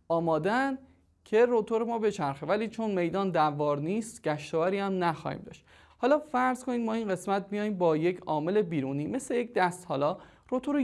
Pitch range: 155-225 Hz